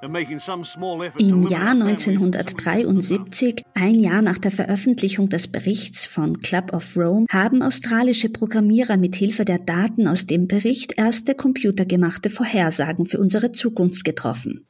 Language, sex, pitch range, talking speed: German, female, 180-220 Hz, 125 wpm